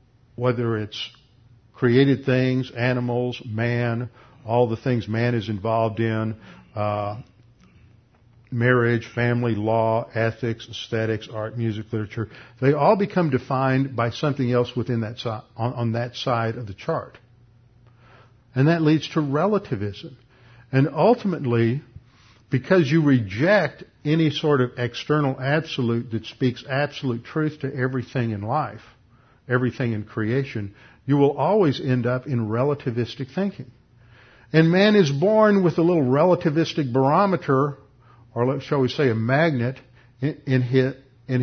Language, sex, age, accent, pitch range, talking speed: English, male, 50-69, American, 115-145 Hz, 130 wpm